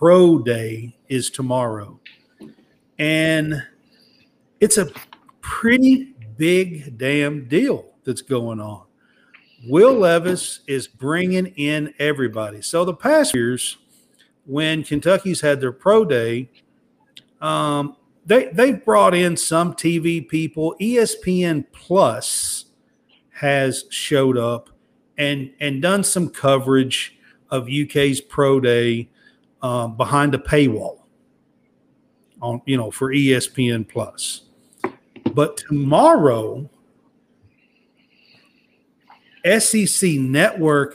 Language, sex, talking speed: English, male, 95 wpm